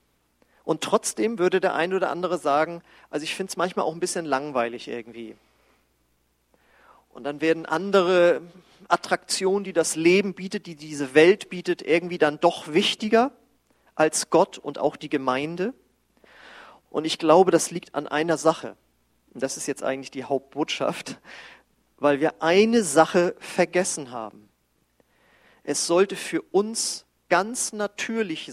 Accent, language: German, German